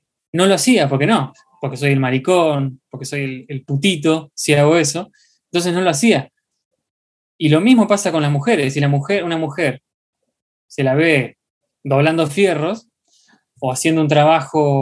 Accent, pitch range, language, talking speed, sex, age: Argentinian, 140-175 Hz, Spanish, 165 wpm, male, 20-39